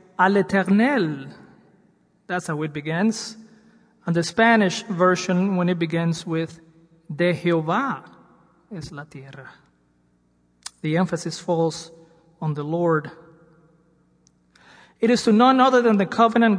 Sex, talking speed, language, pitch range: male, 120 wpm, English, 160-205 Hz